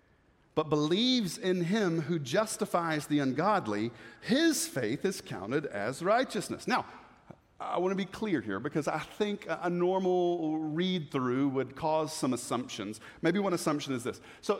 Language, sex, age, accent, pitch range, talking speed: English, male, 40-59, American, 155-225 Hz, 150 wpm